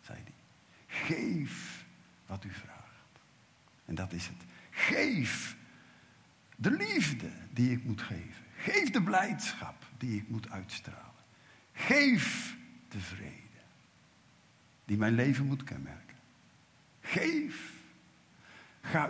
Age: 50-69